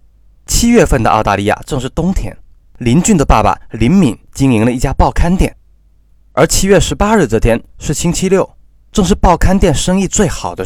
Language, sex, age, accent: Chinese, male, 20-39, native